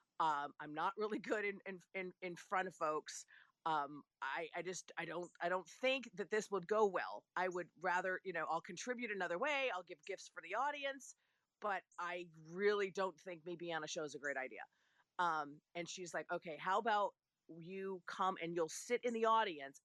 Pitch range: 160-200 Hz